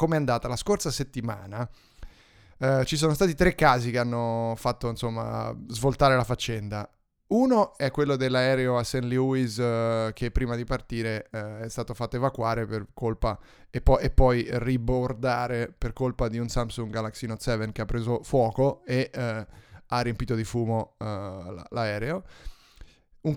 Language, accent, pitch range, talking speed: Italian, native, 115-145 Hz, 160 wpm